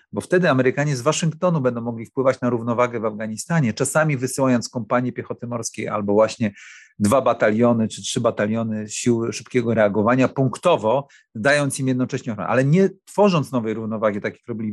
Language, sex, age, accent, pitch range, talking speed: Polish, male, 40-59, native, 110-135 Hz, 165 wpm